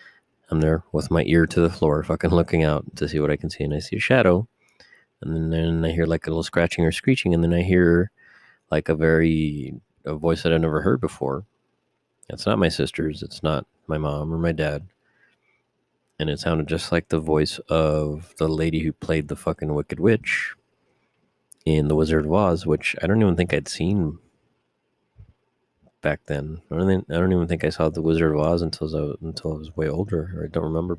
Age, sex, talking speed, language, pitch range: 30-49, male, 210 wpm, English, 75-85 Hz